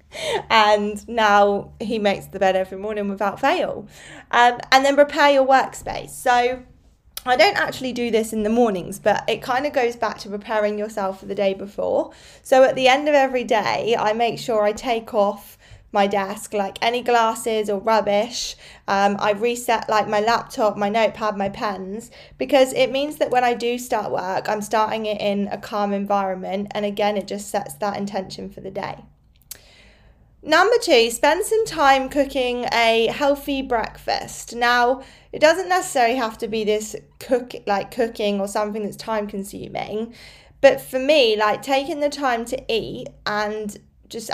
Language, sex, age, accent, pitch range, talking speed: English, female, 20-39, British, 205-250 Hz, 175 wpm